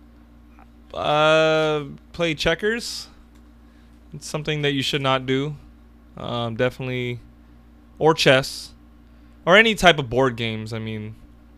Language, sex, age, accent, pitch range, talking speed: English, male, 20-39, American, 105-155 Hz, 115 wpm